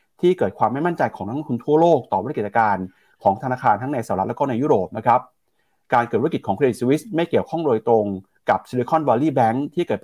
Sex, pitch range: male, 110-155 Hz